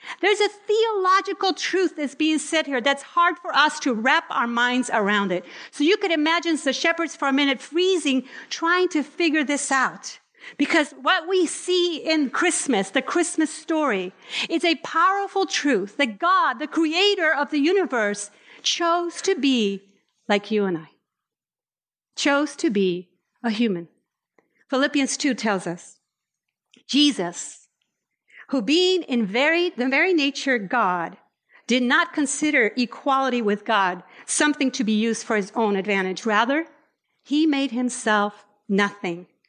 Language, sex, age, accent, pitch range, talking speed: English, female, 50-69, American, 235-340 Hz, 150 wpm